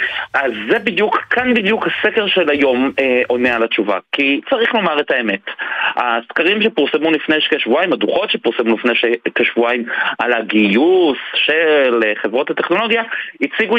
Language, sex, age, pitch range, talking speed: Hebrew, male, 30-49, 125-215 Hz, 135 wpm